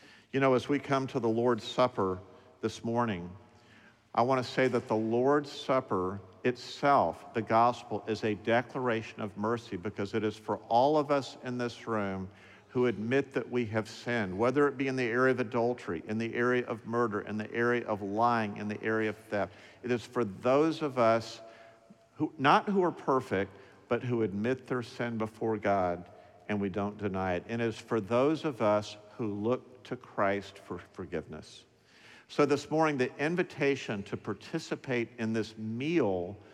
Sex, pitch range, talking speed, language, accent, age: male, 105-125 Hz, 185 wpm, English, American, 50-69